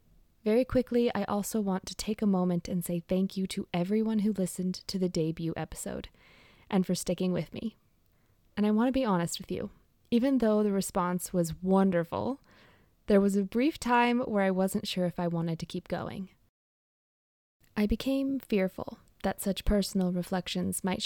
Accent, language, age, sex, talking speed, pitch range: American, English, 20-39, female, 180 wpm, 175-205 Hz